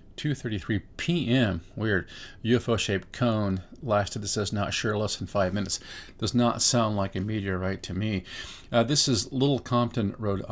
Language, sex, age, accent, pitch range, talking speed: English, male, 50-69, American, 95-120 Hz, 160 wpm